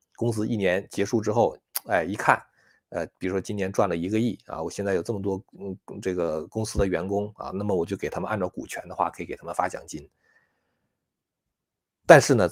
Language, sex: Chinese, male